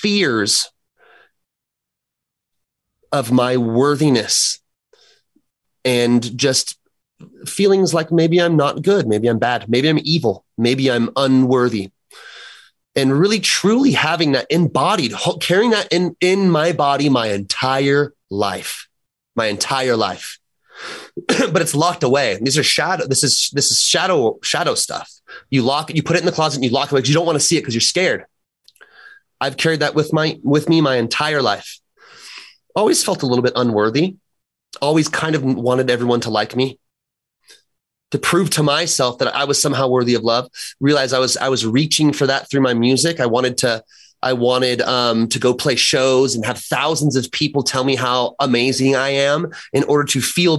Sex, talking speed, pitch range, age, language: male, 175 wpm, 125-155 Hz, 30-49, English